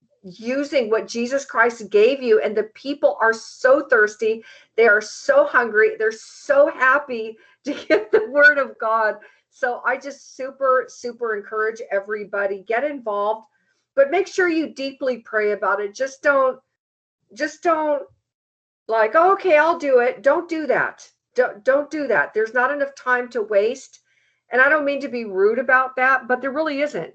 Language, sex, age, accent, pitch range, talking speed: English, female, 50-69, American, 215-290 Hz, 175 wpm